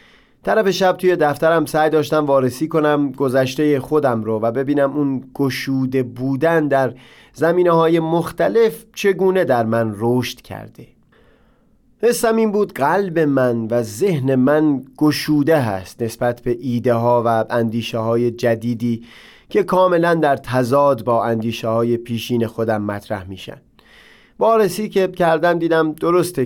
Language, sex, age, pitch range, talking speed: Persian, male, 30-49, 120-150 Hz, 125 wpm